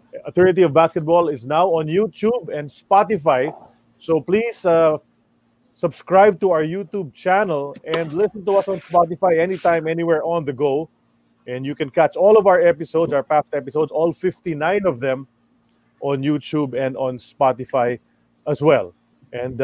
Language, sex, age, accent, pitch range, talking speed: English, male, 20-39, Filipino, 150-195 Hz, 155 wpm